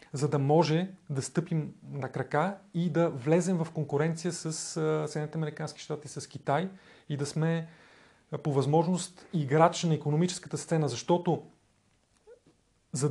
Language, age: Bulgarian, 30-49